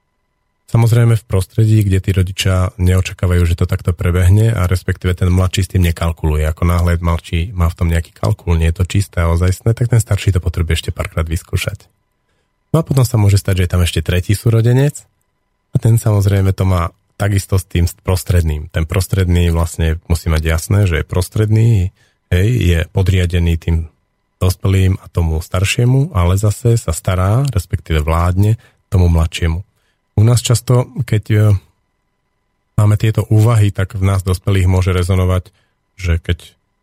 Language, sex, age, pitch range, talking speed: Slovak, male, 40-59, 85-105 Hz, 165 wpm